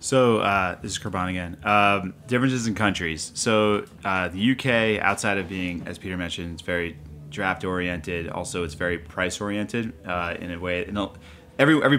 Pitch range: 85-100 Hz